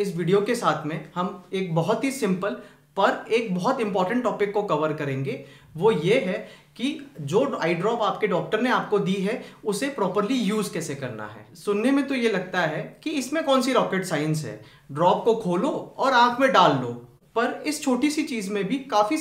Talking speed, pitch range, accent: 95 wpm, 165-240 Hz, native